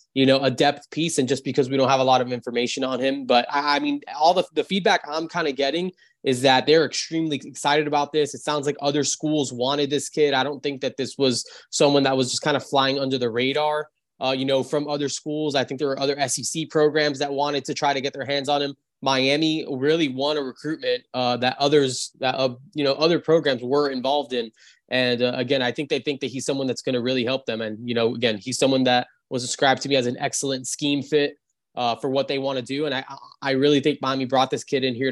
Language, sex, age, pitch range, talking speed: English, male, 20-39, 125-145 Hz, 255 wpm